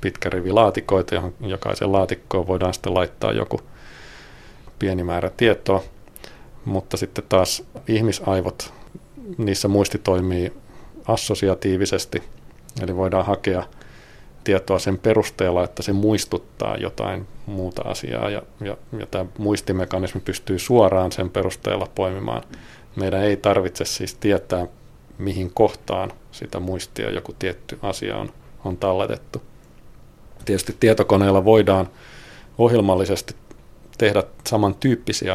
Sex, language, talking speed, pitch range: male, Finnish, 110 wpm, 90-105 Hz